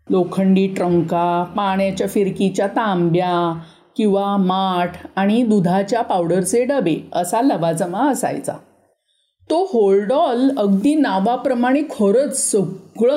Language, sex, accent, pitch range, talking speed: Marathi, female, native, 185-265 Hz, 90 wpm